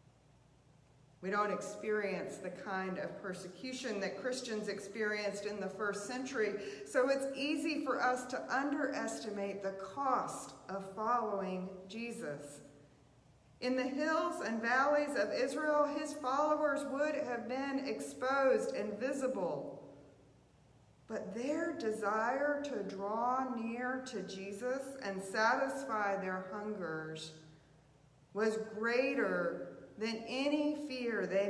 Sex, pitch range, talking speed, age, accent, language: female, 185-255 Hz, 115 wpm, 40-59, American, English